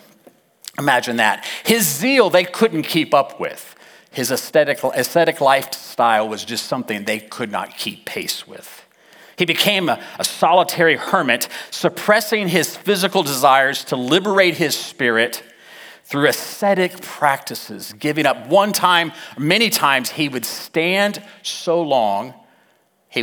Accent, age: American, 40-59